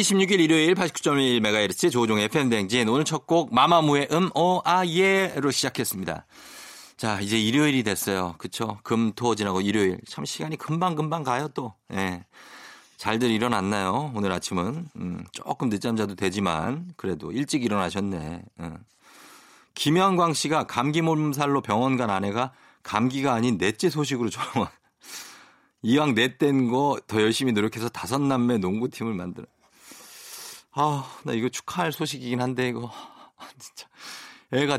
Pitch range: 105-150 Hz